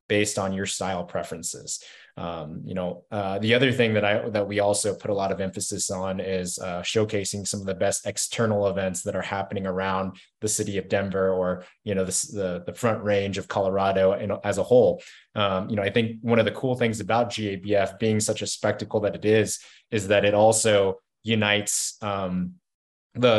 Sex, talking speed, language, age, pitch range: male, 205 wpm, English, 20-39, 95-115 Hz